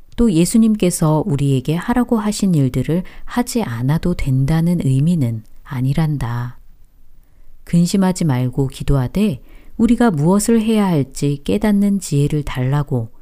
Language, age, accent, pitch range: Korean, 40-59, native, 130-190 Hz